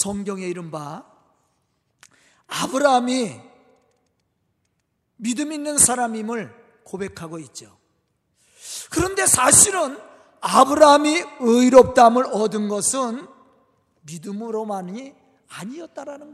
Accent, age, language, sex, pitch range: native, 50-69, Korean, male, 200-300 Hz